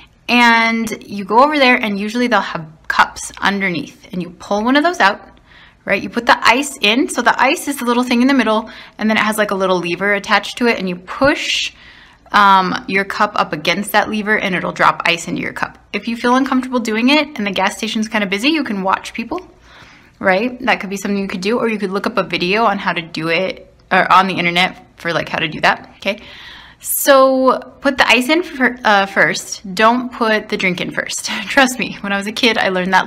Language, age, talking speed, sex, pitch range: English, 20-39, 240 wpm, female, 190-245 Hz